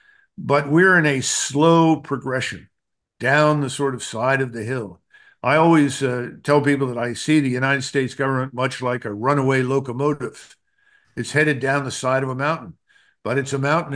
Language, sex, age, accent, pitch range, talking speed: German, male, 50-69, American, 125-155 Hz, 185 wpm